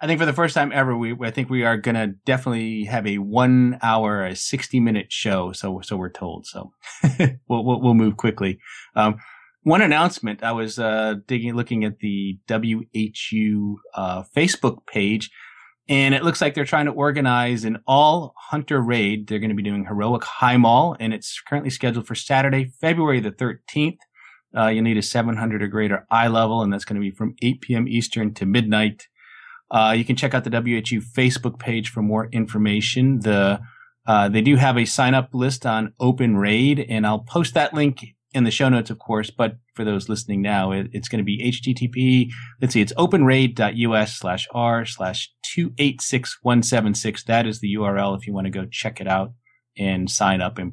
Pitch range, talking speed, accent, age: 105-125 Hz, 195 wpm, American, 30-49